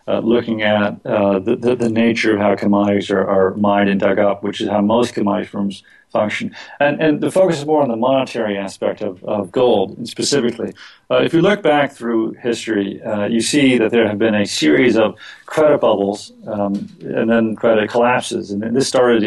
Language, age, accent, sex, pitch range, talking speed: English, 40-59, American, male, 105-125 Hz, 200 wpm